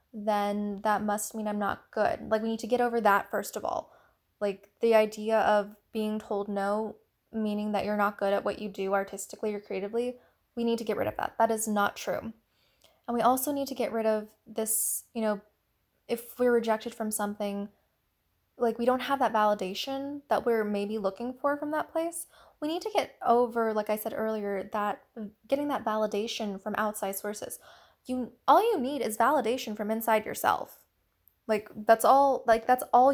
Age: 10-29